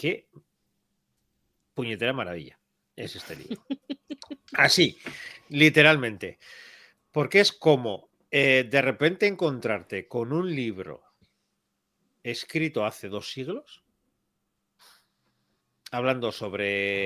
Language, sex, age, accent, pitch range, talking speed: Spanish, male, 40-59, Spanish, 100-130 Hz, 85 wpm